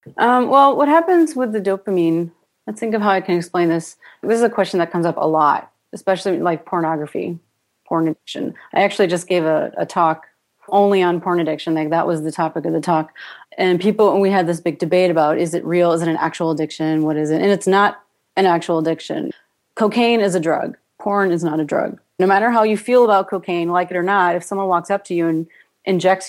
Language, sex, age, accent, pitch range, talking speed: English, female, 30-49, American, 165-195 Hz, 235 wpm